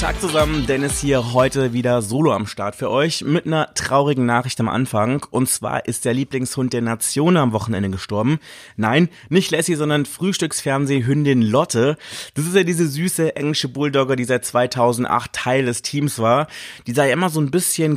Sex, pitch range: male, 120-150 Hz